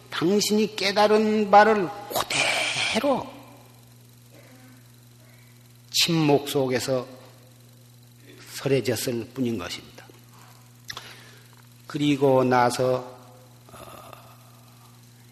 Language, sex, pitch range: Korean, male, 120-130 Hz